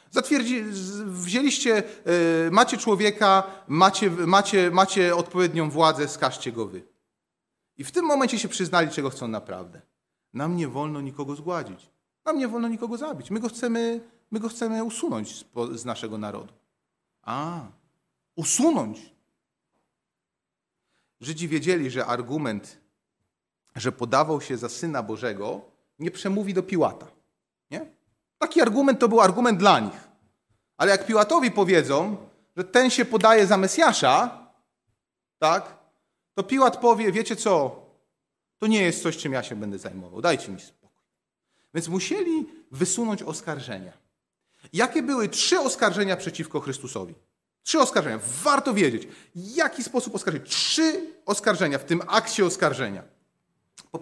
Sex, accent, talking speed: male, native, 125 wpm